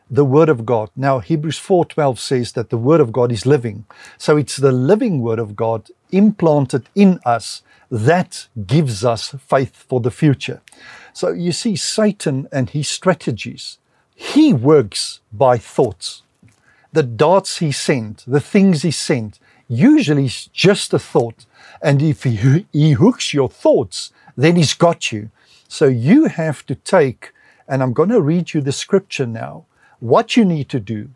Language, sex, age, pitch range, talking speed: English, male, 60-79, 125-170 Hz, 165 wpm